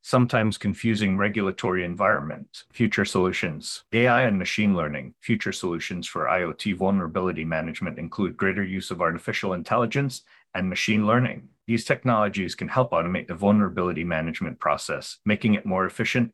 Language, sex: English, male